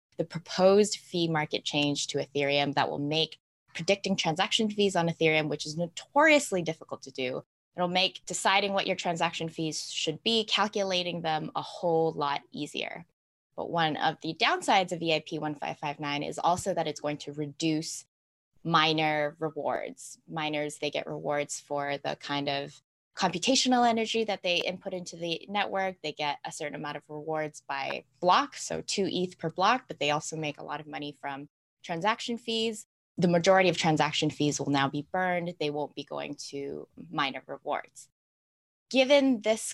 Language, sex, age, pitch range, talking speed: English, female, 20-39, 150-190 Hz, 170 wpm